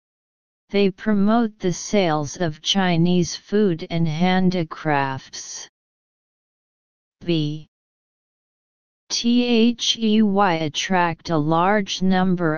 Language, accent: English, American